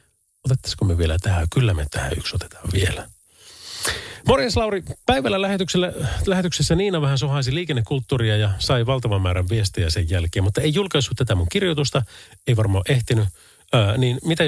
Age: 40-59